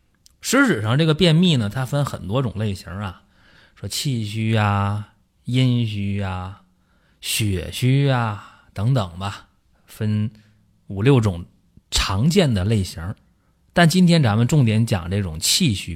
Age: 30-49